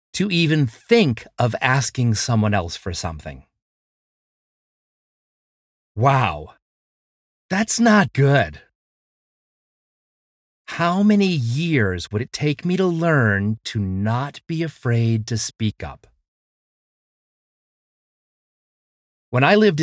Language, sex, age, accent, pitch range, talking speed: English, male, 40-59, American, 110-165 Hz, 95 wpm